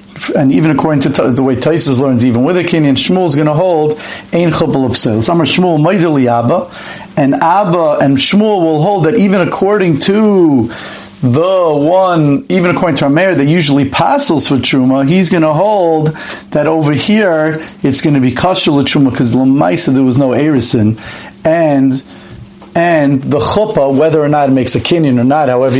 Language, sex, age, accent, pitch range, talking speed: English, male, 50-69, American, 135-175 Hz, 175 wpm